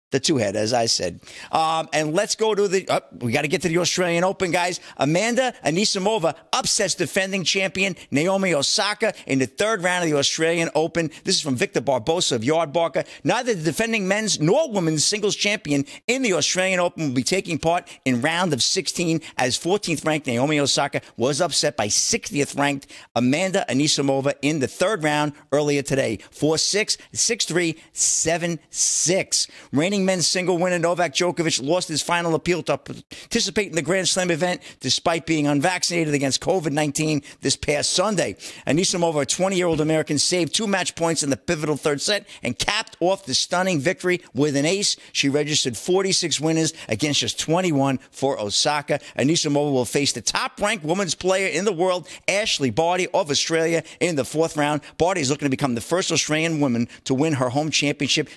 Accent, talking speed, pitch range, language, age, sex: American, 180 wpm, 145-185 Hz, English, 50-69, male